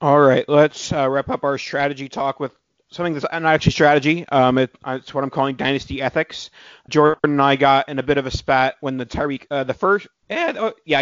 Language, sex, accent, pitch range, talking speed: English, male, American, 130-150 Hz, 210 wpm